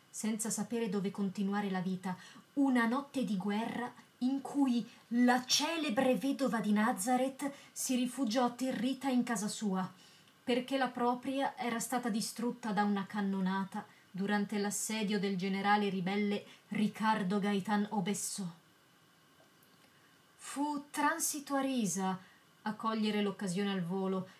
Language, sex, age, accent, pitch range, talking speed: Italian, female, 30-49, native, 195-250 Hz, 120 wpm